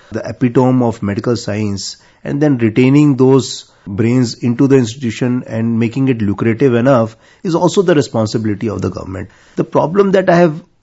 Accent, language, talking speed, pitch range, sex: Indian, English, 165 wpm, 115-145 Hz, male